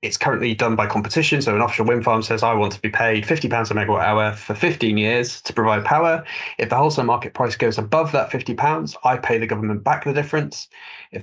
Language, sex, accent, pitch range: English, male, British, 110-125 Hz